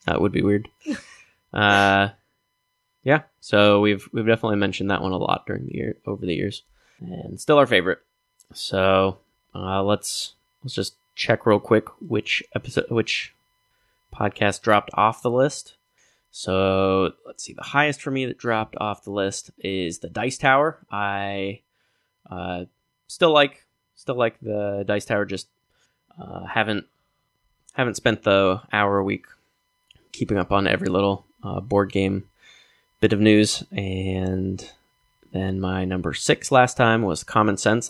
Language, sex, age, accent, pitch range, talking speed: English, male, 10-29, American, 95-125 Hz, 150 wpm